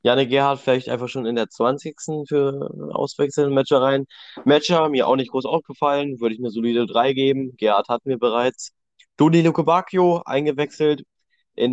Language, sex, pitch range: German, male, 120-145 Hz